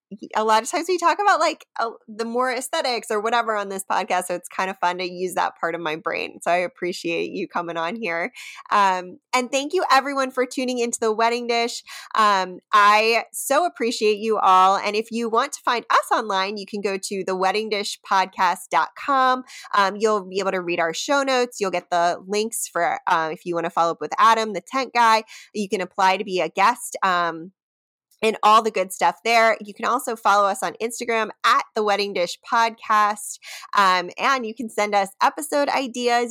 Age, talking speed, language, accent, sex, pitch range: 20-39, 210 wpm, English, American, female, 190-240 Hz